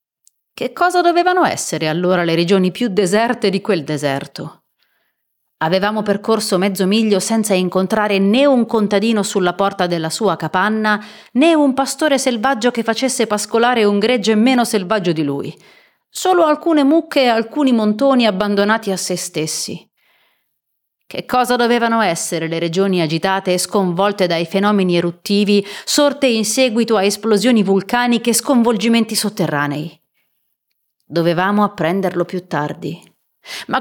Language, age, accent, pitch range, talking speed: Italian, 30-49, native, 185-240 Hz, 135 wpm